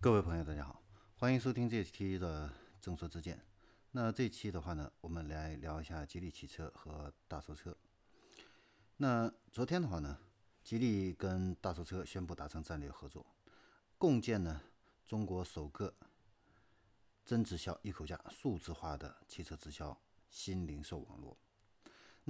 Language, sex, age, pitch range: Chinese, male, 50-69, 80-105 Hz